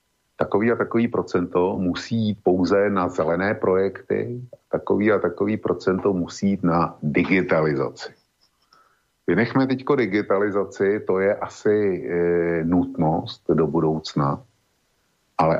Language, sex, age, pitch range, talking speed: Slovak, male, 50-69, 85-105 Hz, 110 wpm